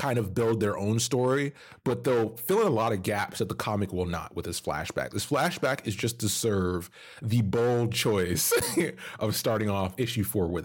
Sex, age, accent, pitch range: male, 30-49, American, 90-115 Hz